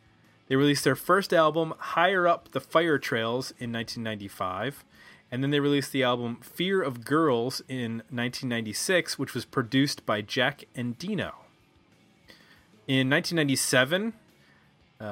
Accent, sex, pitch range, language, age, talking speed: American, male, 115-150 Hz, English, 30-49, 125 wpm